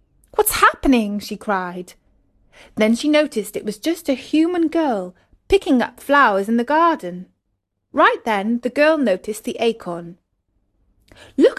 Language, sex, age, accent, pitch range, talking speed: English, female, 30-49, British, 180-260 Hz, 140 wpm